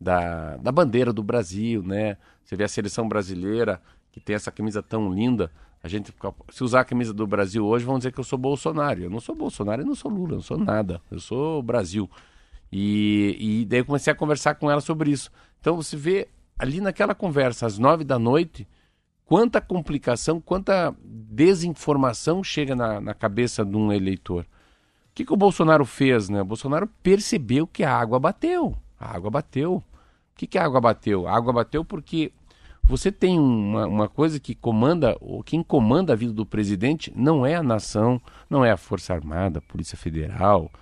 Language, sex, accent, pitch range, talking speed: Portuguese, male, Brazilian, 100-145 Hz, 190 wpm